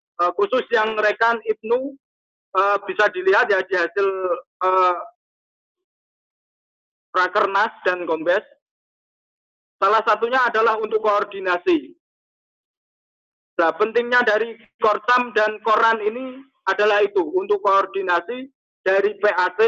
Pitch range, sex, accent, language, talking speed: 205-255 Hz, male, native, Indonesian, 95 wpm